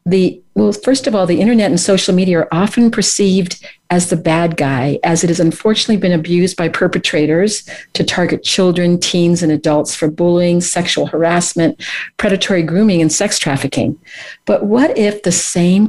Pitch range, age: 160-200 Hz, 50-69